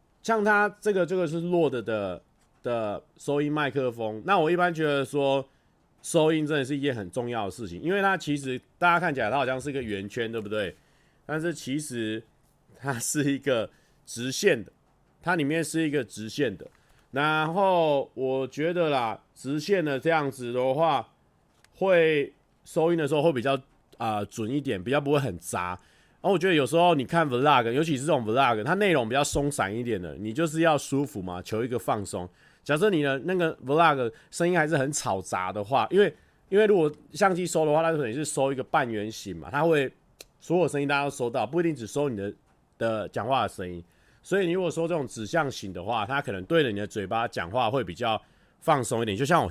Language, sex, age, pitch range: Chinese, male, 30-49, 115-160 Hz